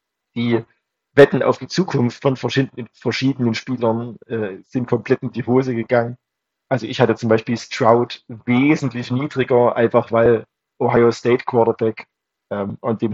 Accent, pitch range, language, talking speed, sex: German, 115-135 Hz, German, 140 wpm, male